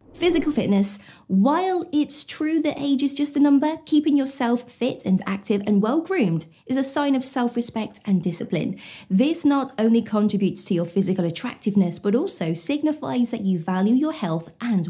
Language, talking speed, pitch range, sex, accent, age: English, 175 wpm, 200-275 Hz, female, British, 20-39